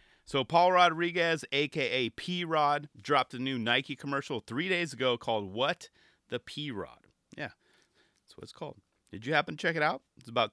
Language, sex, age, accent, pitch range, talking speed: English, male, 30-49, American, 120-150 Hz, 175 wpm